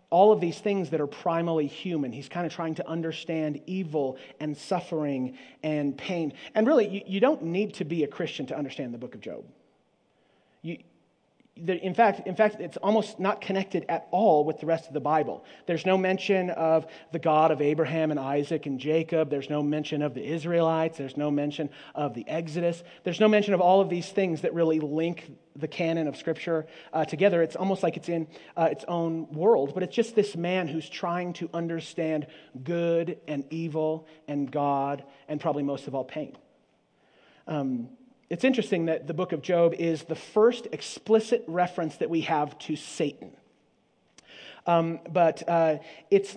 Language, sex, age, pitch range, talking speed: English, male, 30-49, 155-185 Hz, 180 wpm